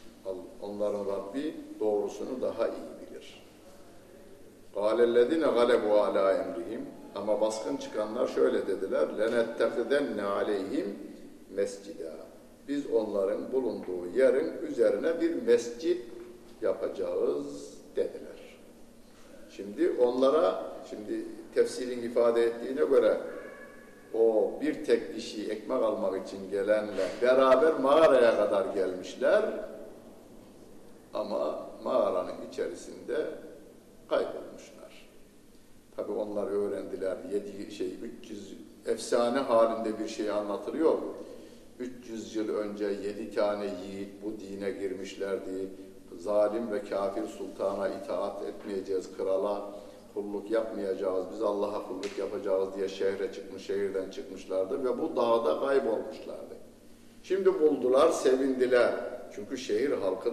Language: Turkish